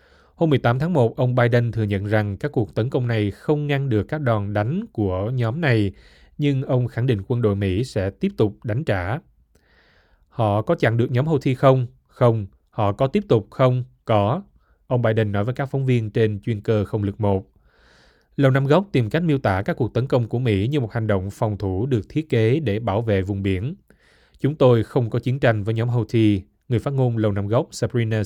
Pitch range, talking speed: 105-130 Hz, 225 wpm